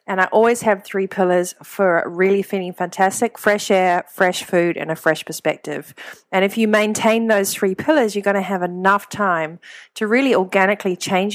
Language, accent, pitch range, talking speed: English, Australian, 175-210 Hz, 185 wpm